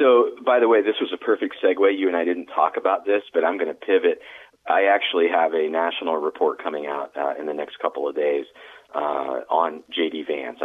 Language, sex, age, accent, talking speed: English, male, 30-49, American, 225 wpm